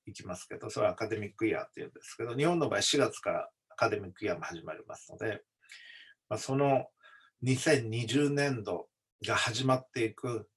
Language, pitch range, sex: Japanese, 120-150 Hz, male